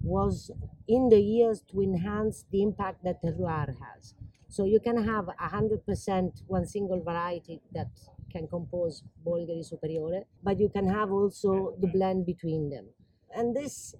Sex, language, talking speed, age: female, English, 160 wpm, 40-59